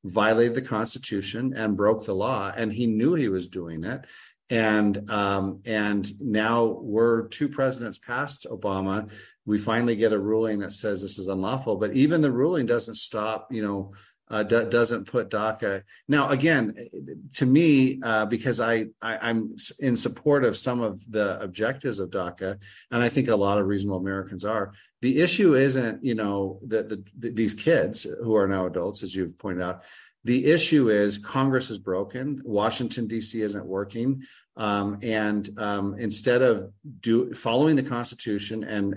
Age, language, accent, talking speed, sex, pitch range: 40-59, English, American, 165 wpm, male, 100-120 Hz